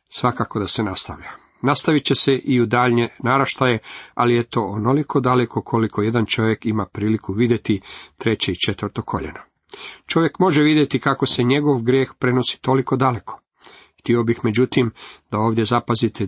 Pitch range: 110-135 Hz